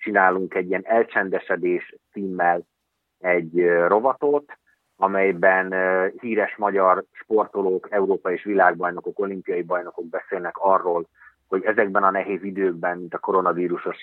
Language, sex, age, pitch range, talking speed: Hungarian, male, 30-49, 95-115 Hz, 110 wpm